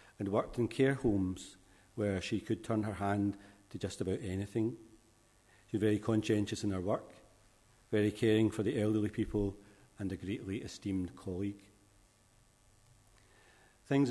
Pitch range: 100-115 Hz